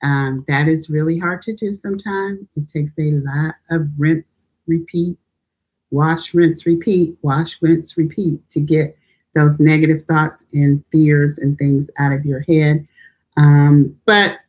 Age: 40-59